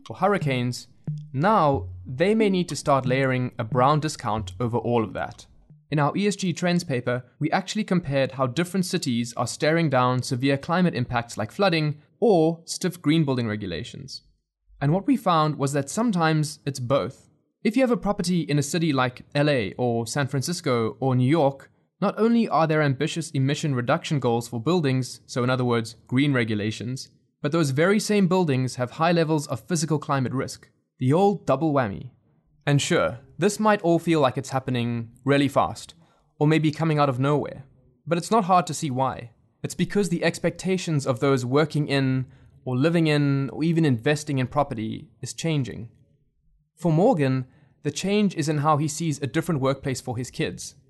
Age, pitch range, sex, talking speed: 20-39, 125-165 Hz, male, 180 wpm